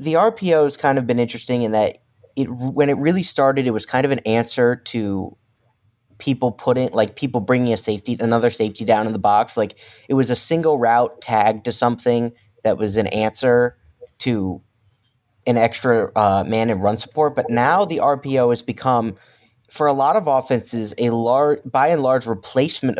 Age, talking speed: 20-39, 190 wpm